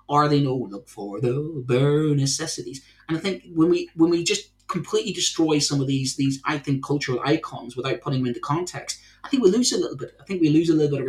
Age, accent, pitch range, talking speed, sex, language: 30-49, British, 130-150 Hz, 245 wpm, male, English